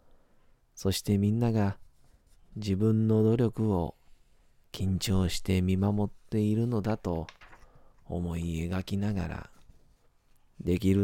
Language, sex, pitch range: Japanese, male, 90-110 Hz